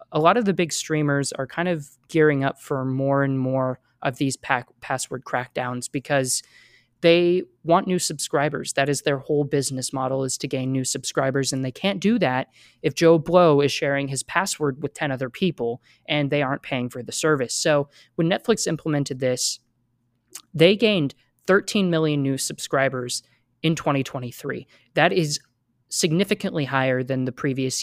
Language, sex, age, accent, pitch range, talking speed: English, male, 20-39, American, 130-160 Hz, 170 wpm